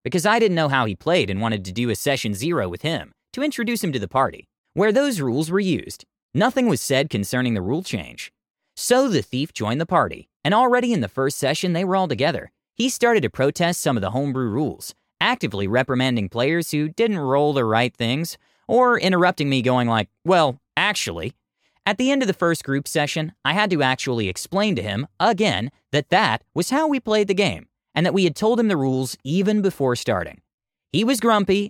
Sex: male